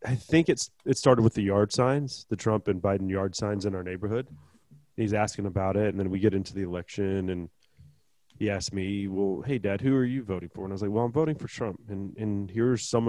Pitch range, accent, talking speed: 100-120 Hz, American, 250 wpm